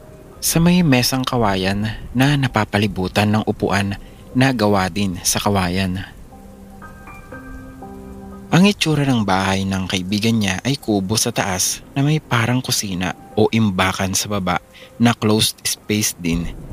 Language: English